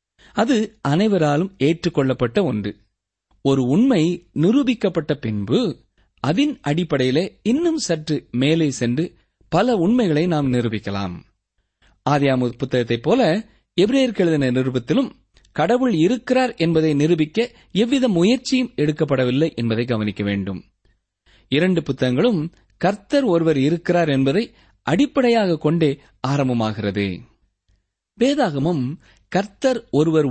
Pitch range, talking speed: 120-195 Hz, 95 wpm